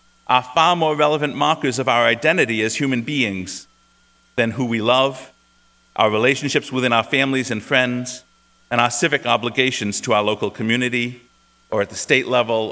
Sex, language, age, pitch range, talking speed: male, English, 40-59, 125-170 Hz, 165 wpm